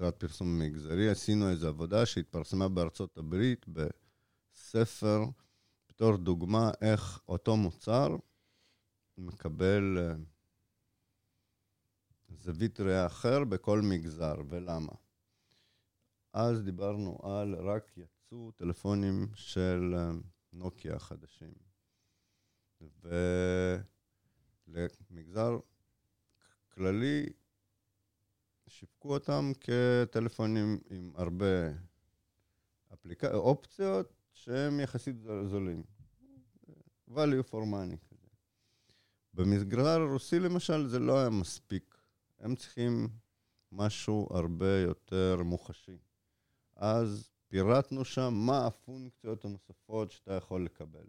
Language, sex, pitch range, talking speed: Hebrew, male, 90-115 Hz, 80 wpm